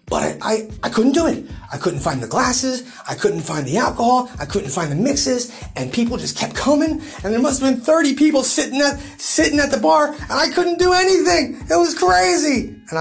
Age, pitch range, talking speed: 30-49, 135-195 Hz, 220 wpm